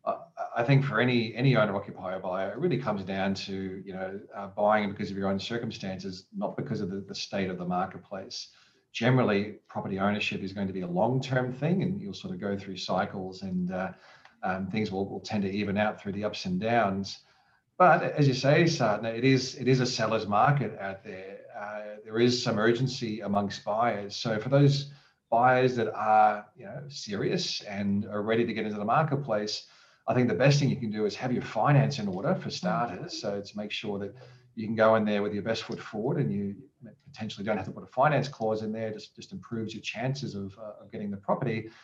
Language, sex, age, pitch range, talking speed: English, male, 40-59, 100-125 Hz, 220 wpm